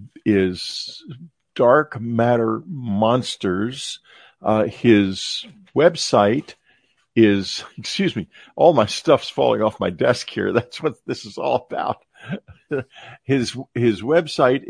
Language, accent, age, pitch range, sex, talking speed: English, American, 50-69, 105-140 Hz, male, 110 wpm